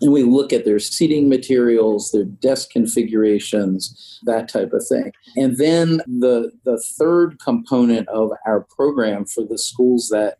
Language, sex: English, male